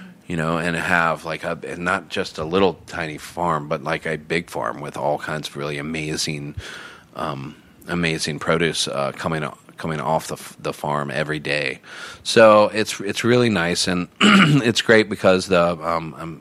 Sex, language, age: male, English, 40-59